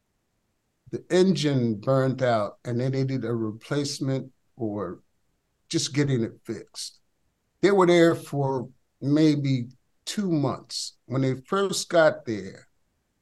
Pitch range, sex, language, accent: 125-160 Hz, male, English, American